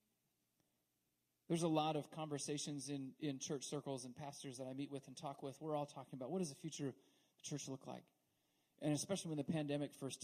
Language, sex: English, male